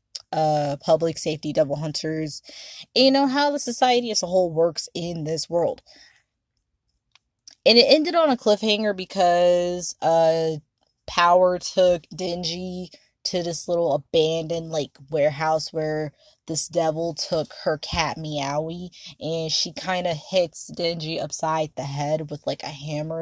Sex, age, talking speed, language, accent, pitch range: female, 20-39, 140 wpm, English, American, 155-180 Hz